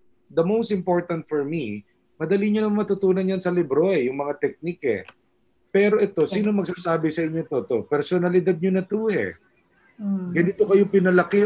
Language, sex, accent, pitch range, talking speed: Filipino, male, native, 150-195 Hz, 160 wpm